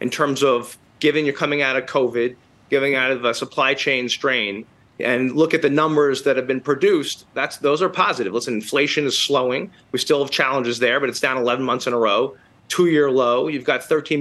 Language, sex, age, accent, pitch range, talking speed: English, male, 30-49, American, 120-150 Hz, 215 wpm